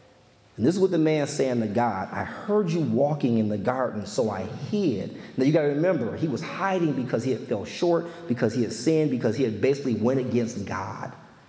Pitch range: 120-185 Hz